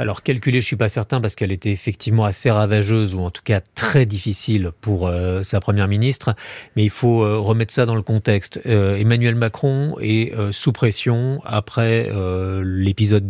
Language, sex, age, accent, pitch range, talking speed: French, male, 40-59, French, 100-125 Hz, 195 wpm